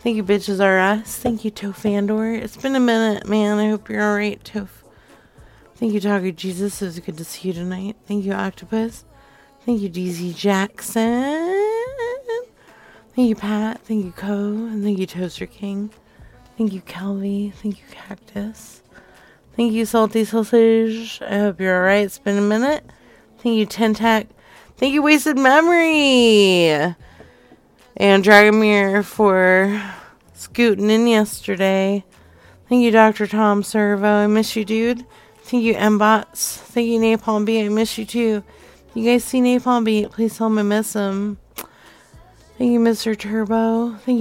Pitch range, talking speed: 205-230 Hz, 155 wpm